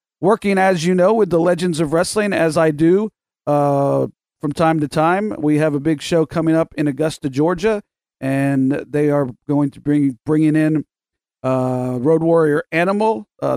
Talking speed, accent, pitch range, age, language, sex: 175 wpm, American, 145-190 Hz, 40-59, English, male